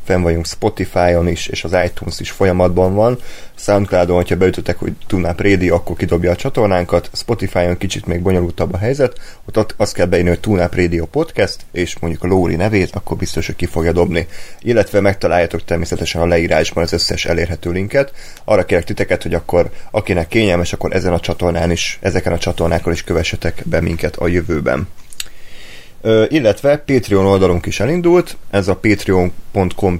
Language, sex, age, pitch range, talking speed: Hungarian, male, 30-49, 85-100 Hz, 170 wpm